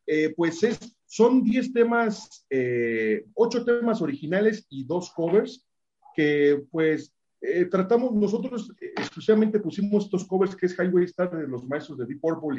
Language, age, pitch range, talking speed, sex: English, 40-59, 140-190 Hz, 155 wpm, male